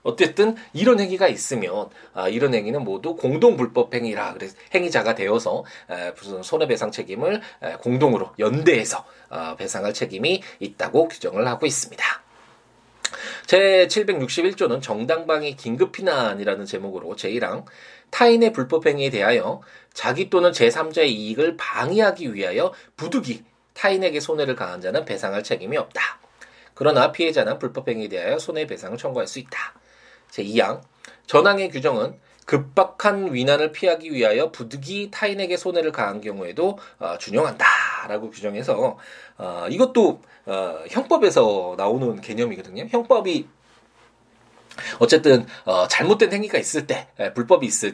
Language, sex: Korean, male